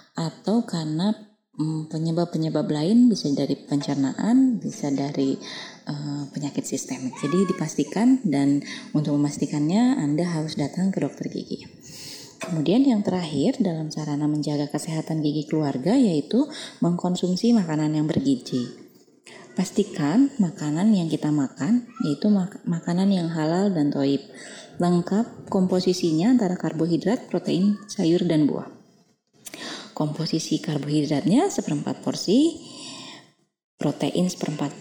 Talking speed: 110 wpm